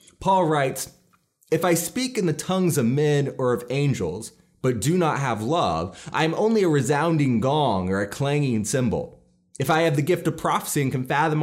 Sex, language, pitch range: male, English, 140-185 Hz